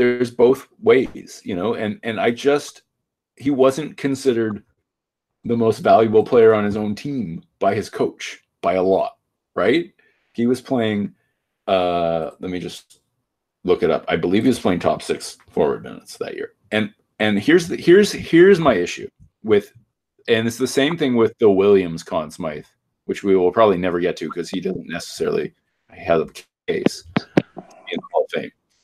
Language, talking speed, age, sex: English, 180 wpm, 30-49, male